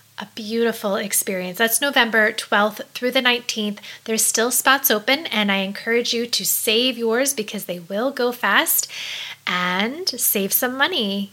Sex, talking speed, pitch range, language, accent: female, 155 wpm, 210-260 Hz, English, American